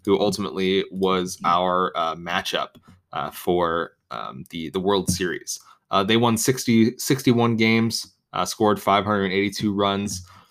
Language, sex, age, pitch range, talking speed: English, male, 20-39, 95-115 Hz, 130 wpm